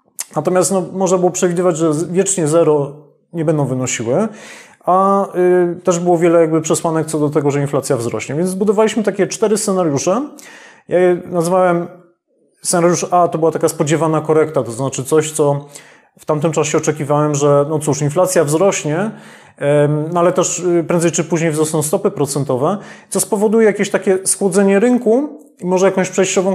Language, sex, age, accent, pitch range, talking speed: Polish, male, 30-49, native, 155-195 Hz, 165 wpm